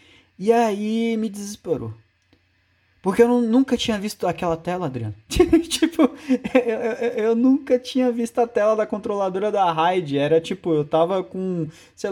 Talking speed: 160 wpm